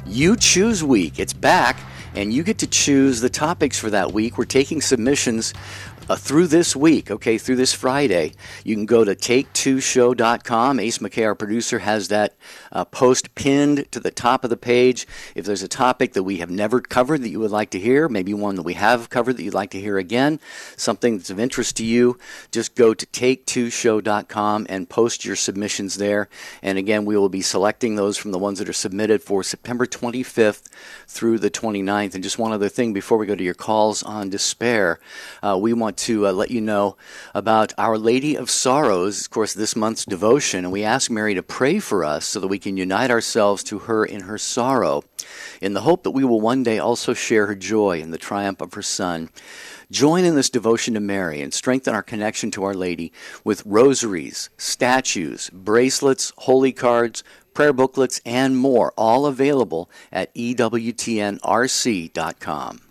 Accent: American